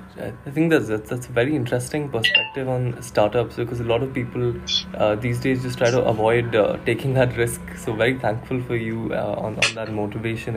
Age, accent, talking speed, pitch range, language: 20-39, Indian, 205 wpm, 110-130 Hz, English